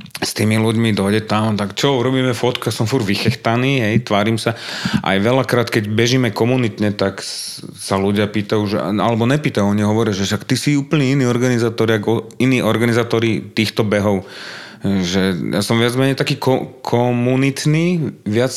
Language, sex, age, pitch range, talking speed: Slovak, male, 30-49, 100-130 Hz, 160 wpm